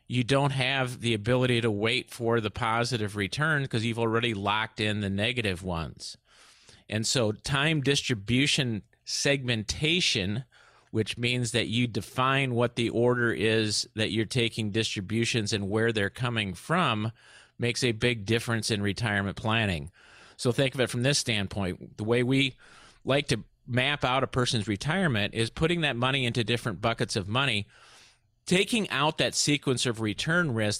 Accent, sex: American, male